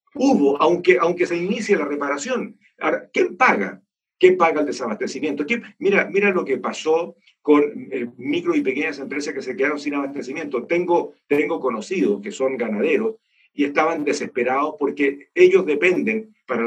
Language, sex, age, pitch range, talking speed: Spanish, male, 50-69, 140-205 Hz, 150 wpm